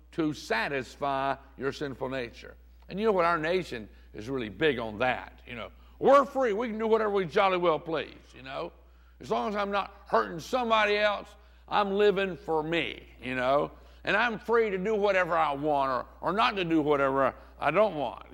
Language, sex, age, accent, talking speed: English, male, 60-79, American, 200 wpm